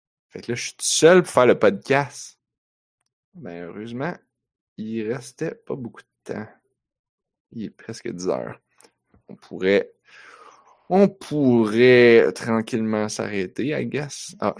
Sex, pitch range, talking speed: male, 100-140 Hz, 135 wpm